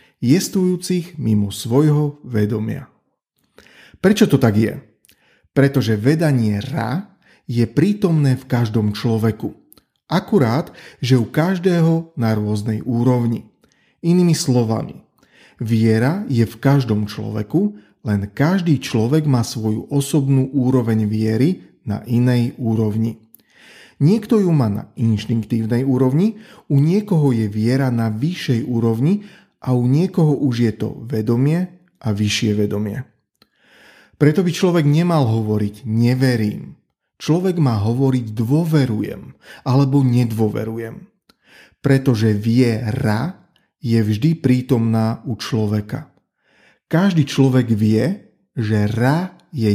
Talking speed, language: 110 wpm, Slovak